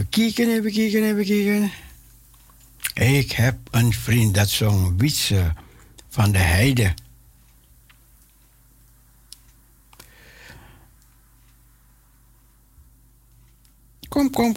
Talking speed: 70 wpm